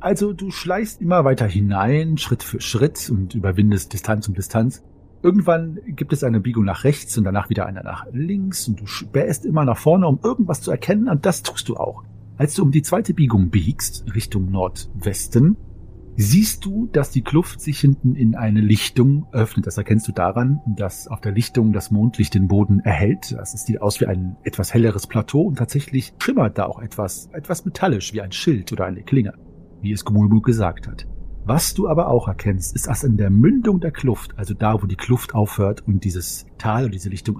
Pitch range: 100-135 Hz